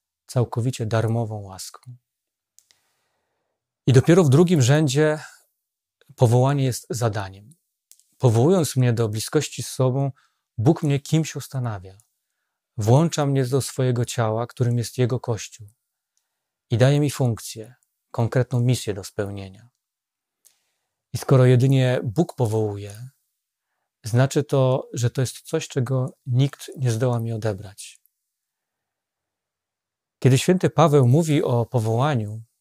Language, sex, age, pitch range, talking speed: Polish, male, 40-59, 115-135 Hz, 110 wpm